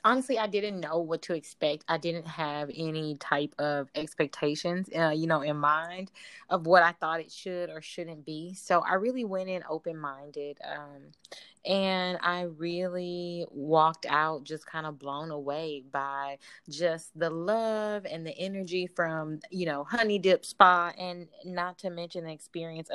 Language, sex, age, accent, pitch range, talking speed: English, female, 20-39, American, 155-180 Hz, 165 wpm